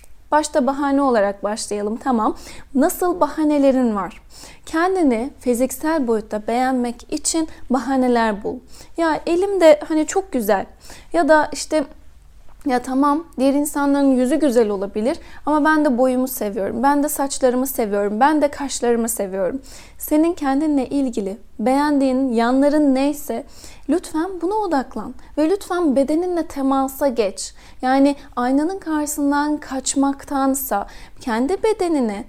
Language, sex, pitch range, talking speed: Turkish, female, 250-310 Hz, 115 wpm